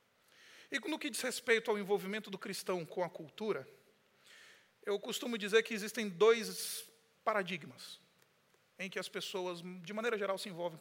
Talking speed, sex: 155 wpm, male